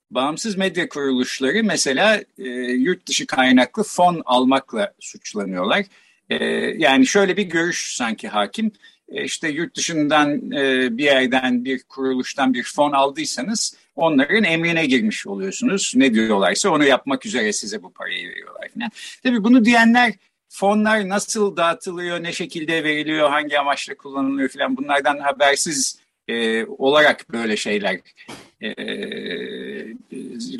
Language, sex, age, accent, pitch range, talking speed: Turkish, male, 50-69, native, 130-210 Hz, 125 wpm